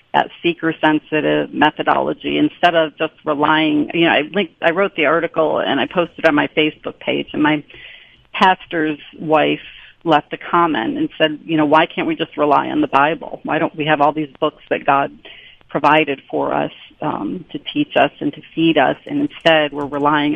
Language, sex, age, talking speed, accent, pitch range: English, female, 40-59, 190 wpm, American, 150-180 Hz